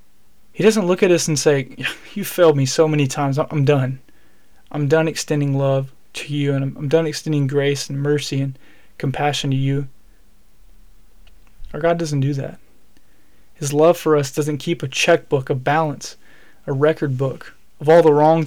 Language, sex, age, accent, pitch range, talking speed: English, male, 20-39, American, 140-160 Hz, 175 wpm